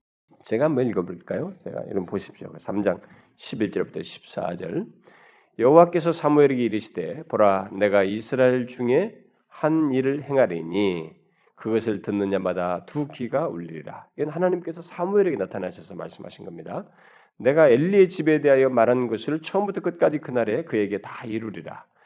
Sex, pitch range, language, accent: male, 105-165 Hz, Korean, native